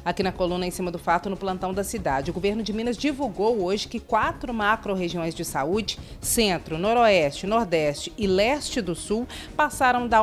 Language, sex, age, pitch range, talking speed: Portuguese, female, 40-59, 180-240 Hz, 180 wpm